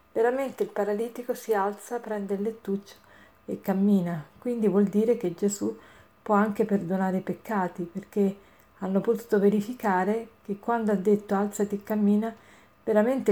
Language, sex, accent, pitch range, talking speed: Italian, female, native, 190-225 Hz, 145 wpm